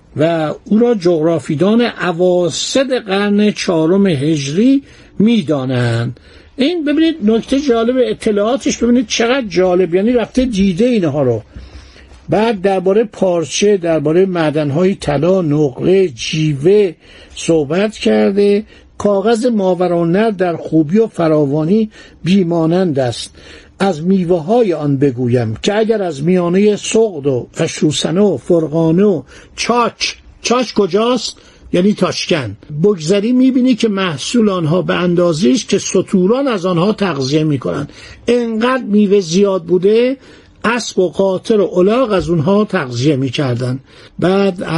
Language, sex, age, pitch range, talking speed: Persian, male, 60-79, 160-215 Hz, 115 wpm